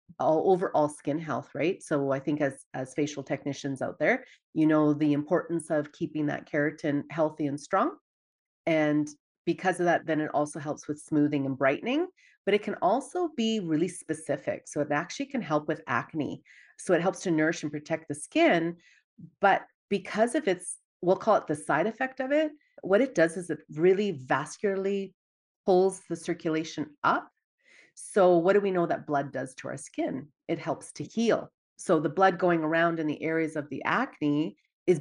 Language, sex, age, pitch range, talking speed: English, female, 30-49, 150-190 Hz, 190 wpm